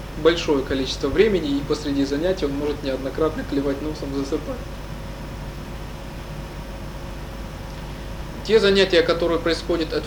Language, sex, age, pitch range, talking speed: Russian, male, 20-39, 140-170 Hz, 100 wpm